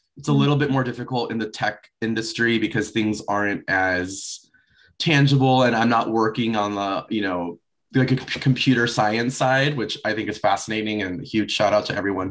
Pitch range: 105-130 Hz